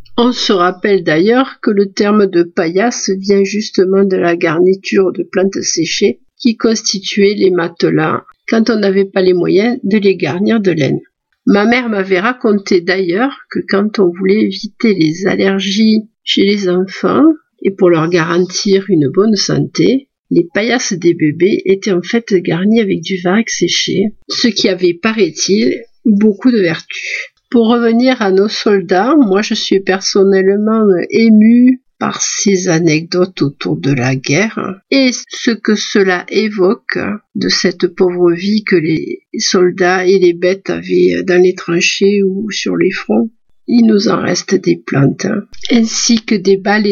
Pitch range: 180-220 Hz